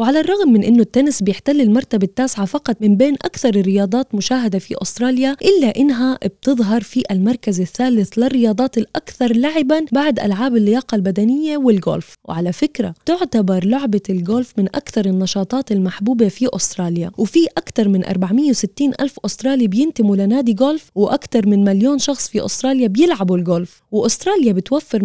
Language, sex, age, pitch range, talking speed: Arabic, female, 20-39, 195-265 Hz, 145 wpm